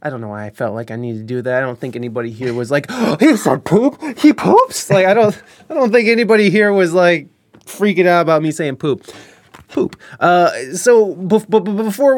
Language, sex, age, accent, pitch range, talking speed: English, male, 20-39, American, 135-210 Hz, 215 wpm